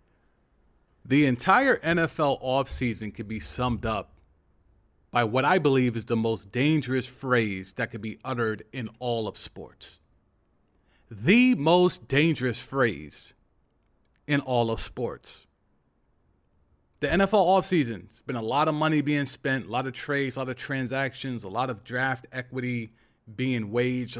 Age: 30-49